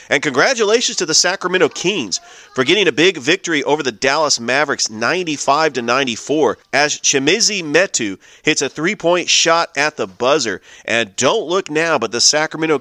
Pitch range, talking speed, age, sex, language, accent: 120-155 Hz, 155 wpm, 30-49, male, English, American